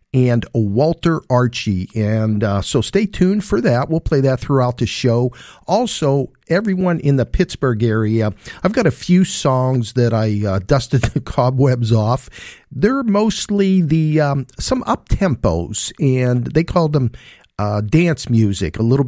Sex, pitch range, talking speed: male, 115-160 Hz, 155 wpm